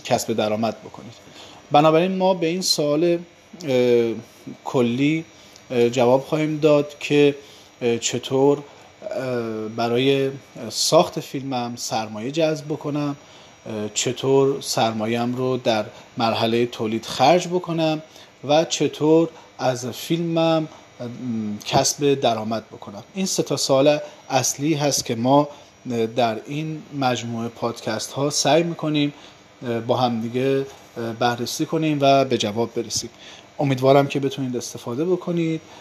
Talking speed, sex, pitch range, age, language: 110 wpm, male, 115-145 Hz, 40-59, Persian